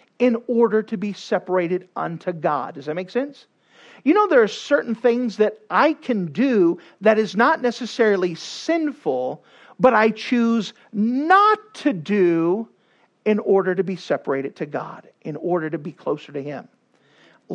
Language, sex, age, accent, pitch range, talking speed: English, male, 50-69, American, 185-235 Hz, 160 wpm